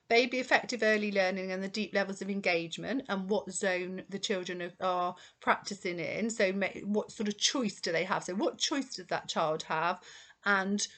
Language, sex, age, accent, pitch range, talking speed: English, female, 40-59, British, 195-240 Hz, 185 wpm